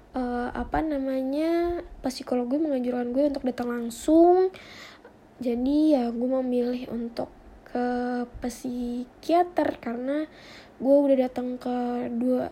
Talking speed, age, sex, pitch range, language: 110 wpm, 20-39, female, 250-285 Hz, Indonesian